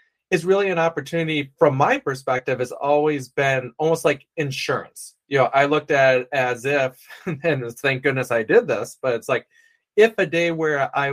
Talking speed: 190 wpm